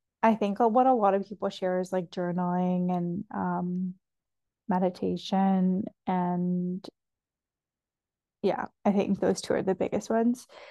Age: 10-29